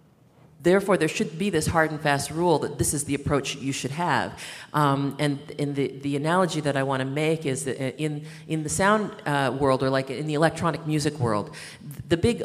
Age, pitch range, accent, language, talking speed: 40-59, 125-155 Hz, American, English, 215 wpm